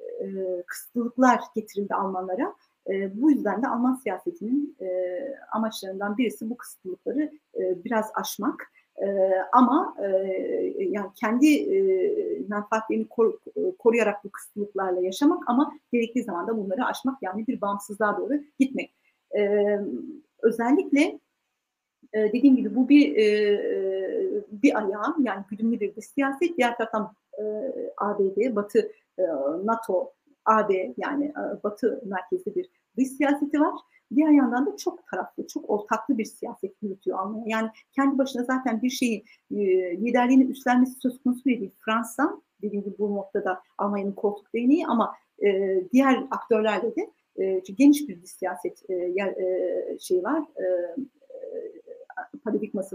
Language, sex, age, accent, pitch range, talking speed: Turkish, female, 50-69, native, 205-295 Hz, 120 wpm